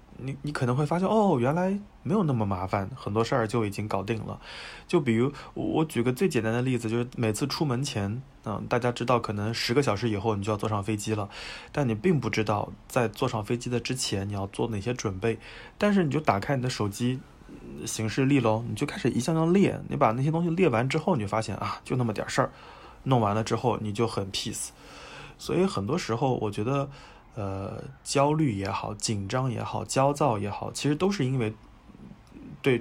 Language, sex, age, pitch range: Chinese, male, 20-39, 110-135 Hz